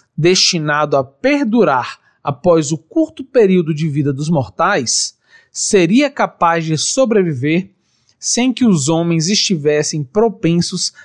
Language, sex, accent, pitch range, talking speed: Portuguese, male, Brazilian, 150-215 Hz, 115 wpm